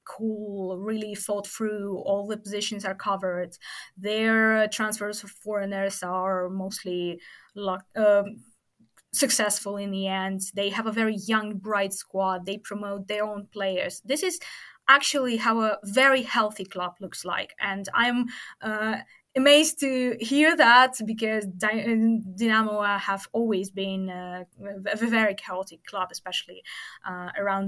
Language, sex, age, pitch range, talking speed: English, female, 20-39, 195-235 Hz, 130 wpm